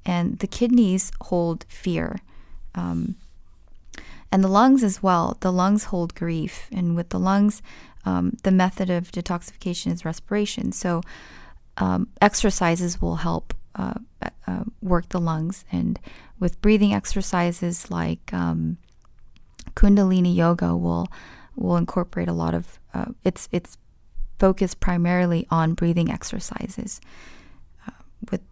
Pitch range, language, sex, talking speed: 120-195 Hz, English, female, 125 wpm